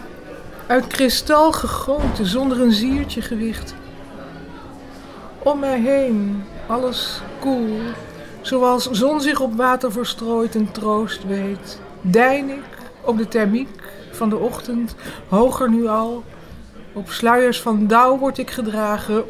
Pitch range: 210-255 Hz